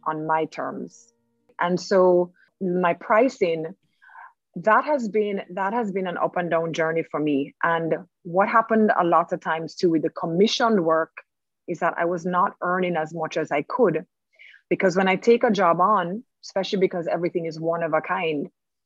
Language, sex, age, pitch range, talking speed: English, female, 30-49, 165-200 Hz, 185 wpm